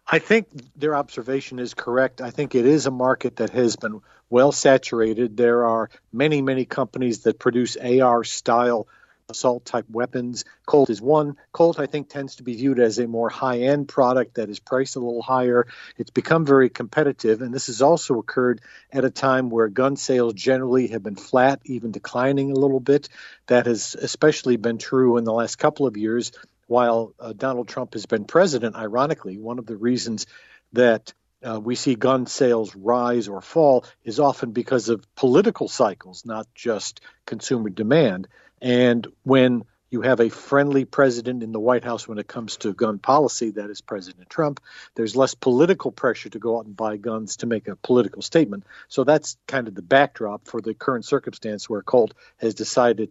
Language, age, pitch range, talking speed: English, 50-69, 115-135 Hz, 185 wpm